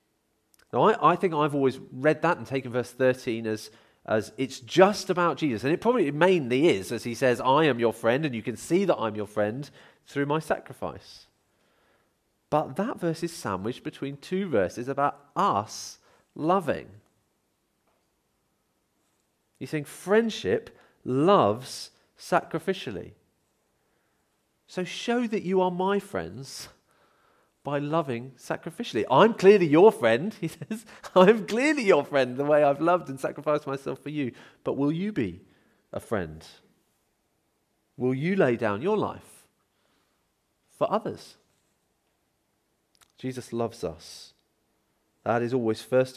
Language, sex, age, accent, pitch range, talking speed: English, male, 40-59, British, 110-170 Hz, 140 wpm